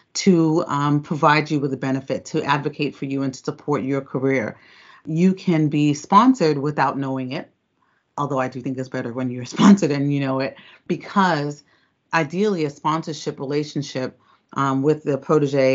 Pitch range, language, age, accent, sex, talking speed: 135-155 Hz, English, 30-49, American, female, 170 wpm